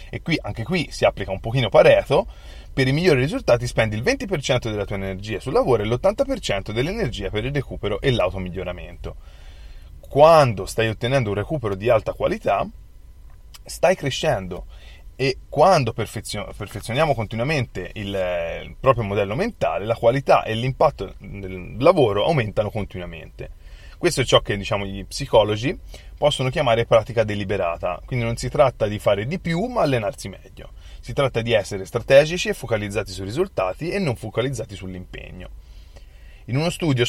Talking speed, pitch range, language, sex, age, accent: 150 wpm, 95-135 Hz, Italian, male, 30-49, native